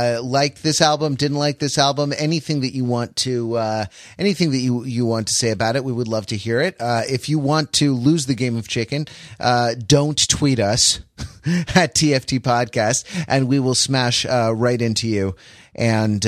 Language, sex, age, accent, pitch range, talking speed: English, male, 30-49, American, 105-125 Hz, 205 wpm